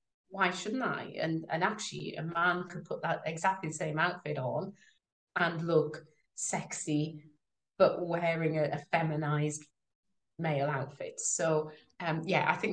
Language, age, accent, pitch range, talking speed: English, 30-49, British, 150-180 Hz, 145 wpm